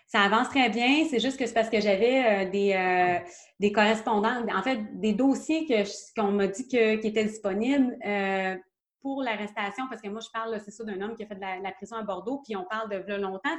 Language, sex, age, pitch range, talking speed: French, female, 30-49, 200-240 Hz, 255 wpm